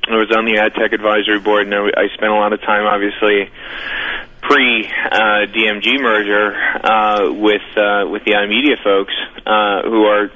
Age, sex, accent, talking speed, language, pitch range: 30-49, male, American, 175 wpm, English, 105-115 Hz